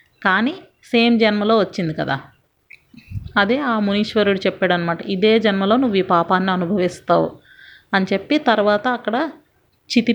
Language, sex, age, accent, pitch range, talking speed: Telugu, female, 30-49, native, 180-215 Hz, 125 wpm